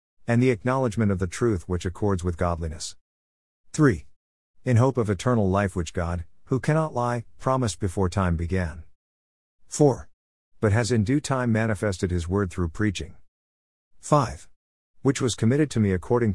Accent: American